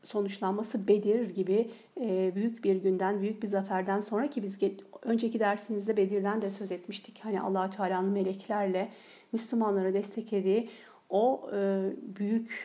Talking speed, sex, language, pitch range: 120 wpm, female, Turkish, 195-225 Hz